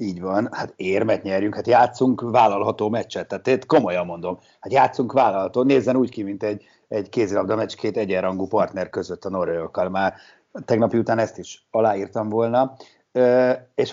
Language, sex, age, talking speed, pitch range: Hungarian, male, 50-69, 155 wpm, 100-130 Hz